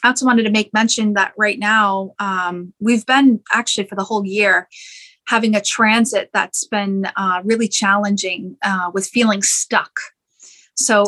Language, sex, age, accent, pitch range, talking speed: English, female, 30-49, American, 200-235 Hz, 160 wpm